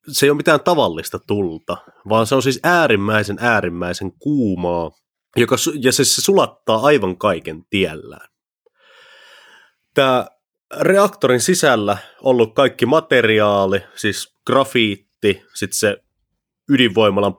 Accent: native